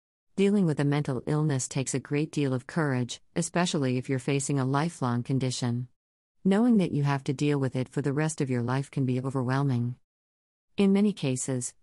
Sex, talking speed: female, 195 wpm